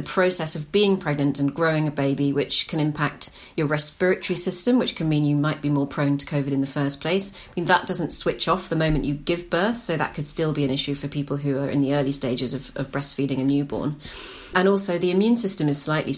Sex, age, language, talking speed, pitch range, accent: female, 30-49, English, 250 wpm, 140-170 Hz, British